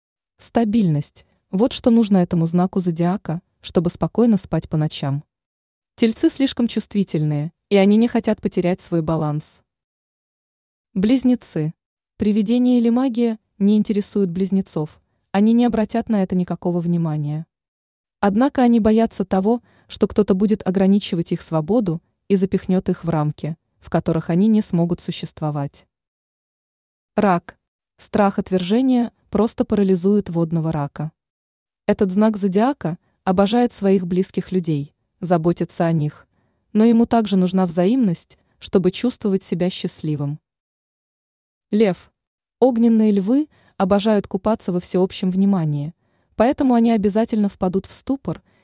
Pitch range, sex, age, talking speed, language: 175-220 Hz, female, 20-39, 120 wpm, Russian